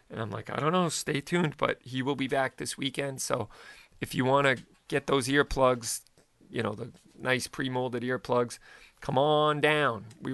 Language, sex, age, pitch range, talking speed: English, male, 40-59, 115-140 Hz, 190 wpm